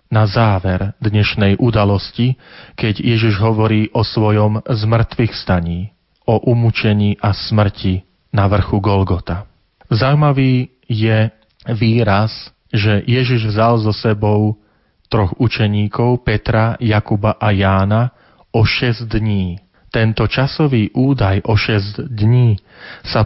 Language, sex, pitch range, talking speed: Slovak, male, 100-115 Hz, 110 wpm